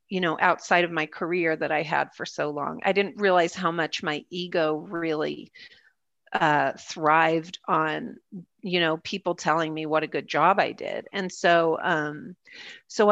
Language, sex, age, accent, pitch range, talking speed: English, female, 40-59, American, 165-195 Hz, 175 wpm